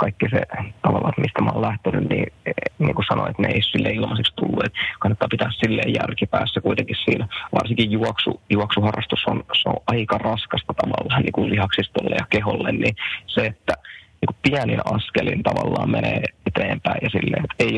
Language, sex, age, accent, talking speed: Finnish, male, 20-39, native, 160 wpm